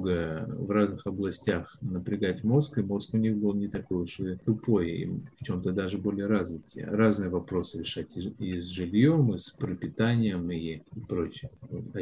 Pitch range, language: 95-120 Hz, Russian